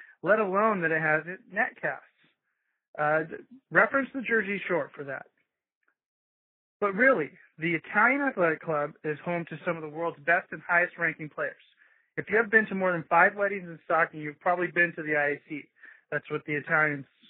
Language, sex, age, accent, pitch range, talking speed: English, male, 30-49, American, 160-205 Hz, 180 wpm